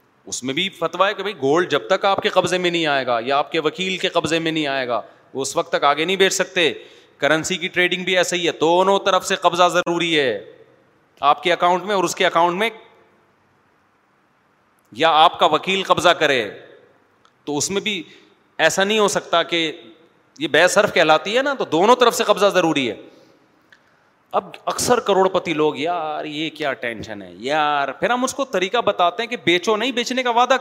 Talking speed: 210 wpm